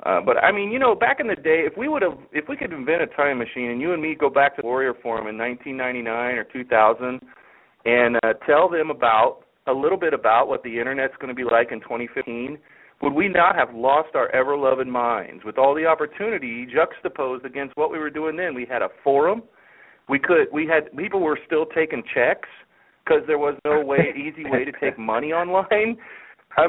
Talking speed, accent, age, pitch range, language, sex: 220 wpm, American, 40-59, 125-170 Hz, English, male